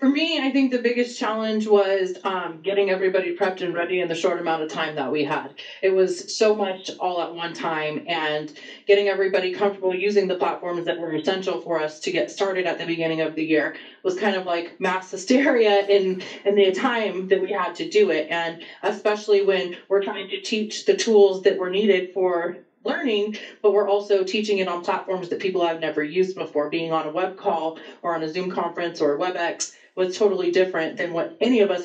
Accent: American